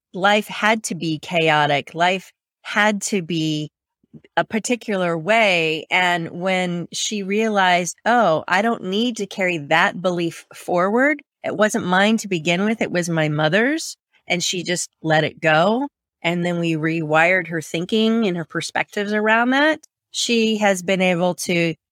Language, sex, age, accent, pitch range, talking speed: English, female, 30-49, American, 170-220 Hz, 155 wpm